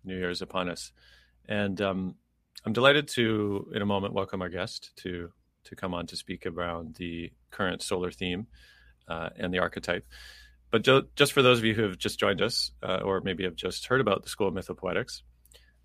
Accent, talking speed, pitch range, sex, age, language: American, 200 wpm, 85-100 Hz, male, 30-49, English